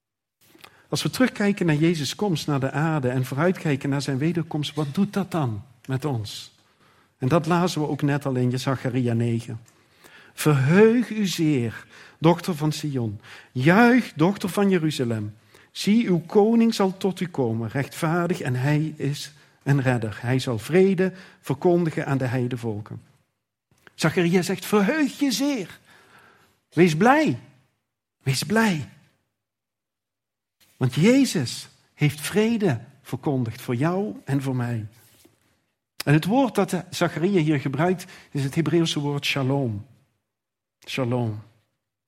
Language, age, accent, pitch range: Dutch, 50-69, Dutch, 125-175 Hz